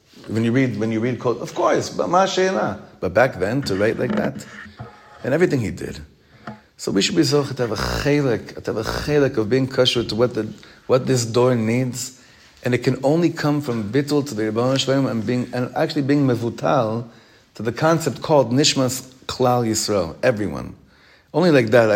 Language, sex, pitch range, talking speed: English, male, 115-150 Hz, 195 wpm